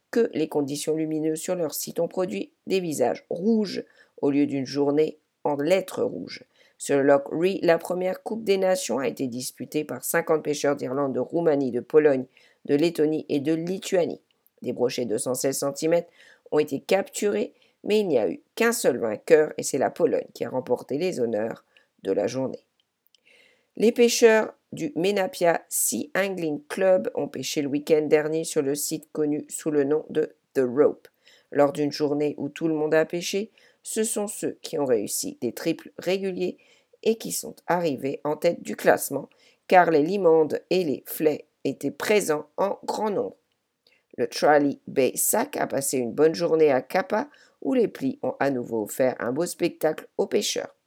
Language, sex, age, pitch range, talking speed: English, female, 50-69, 145-190 Hz, 180 wpm